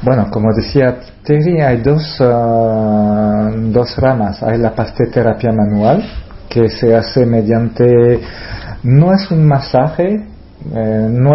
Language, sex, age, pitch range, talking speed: Spanish, male, 40-59, 110-140 Hz, 125 wpm